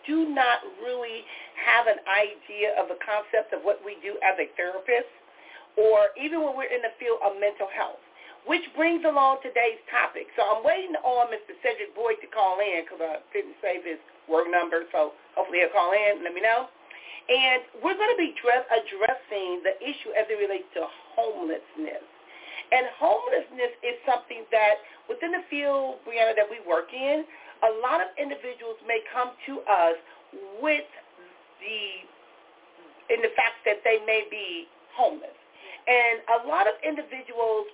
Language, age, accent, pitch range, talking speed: English, 40-59, American, 210-305 Hz, 170 wpm